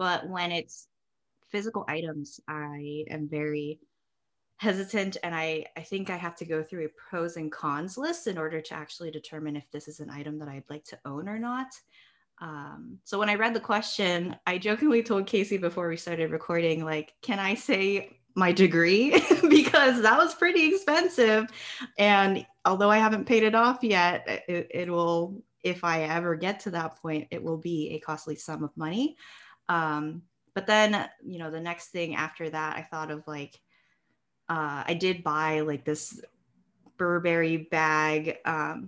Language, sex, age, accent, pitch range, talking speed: English, female, 20-39, American, 155-215 Hz, 175 wpm